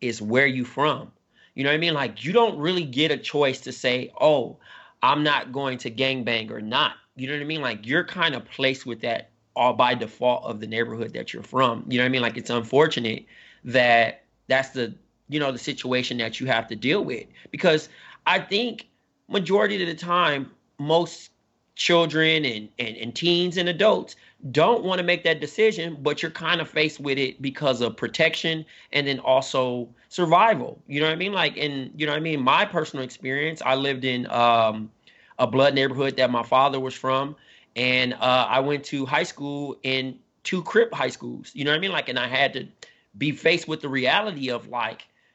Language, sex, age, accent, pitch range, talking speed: English, male, 30-49, American, 125-160 Hz, 210 wpm